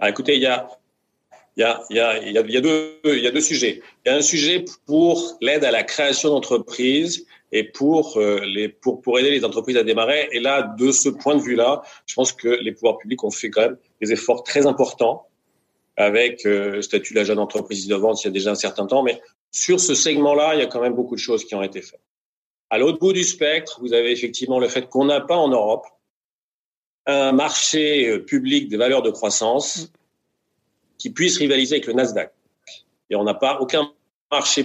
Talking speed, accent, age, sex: 200 wpm, French, 40-59, male